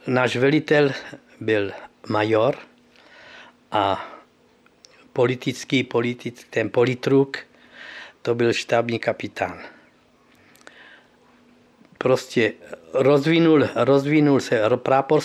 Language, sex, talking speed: Slovak, male, 70 wpm